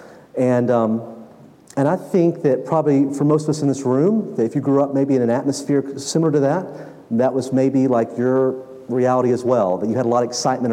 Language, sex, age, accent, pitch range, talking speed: English, male, 40-59, American, 130-155 Hz, 230 wpm